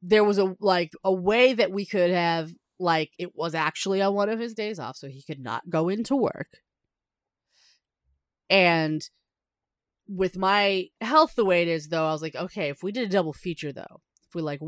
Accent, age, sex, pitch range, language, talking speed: American, 30-49, female, 150-190 Hz, English, 205 wpm